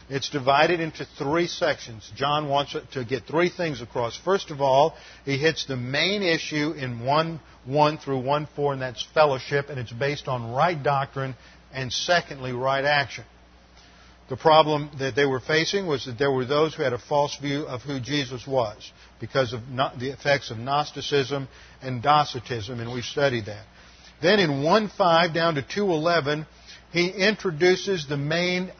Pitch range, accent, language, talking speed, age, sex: 130-160 Hz, American, English, 165 wpm, 50-69, male